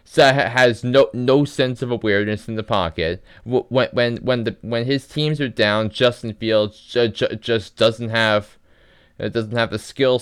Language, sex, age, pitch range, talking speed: English, male, 20-39, 95-115 Hz, 170 wpm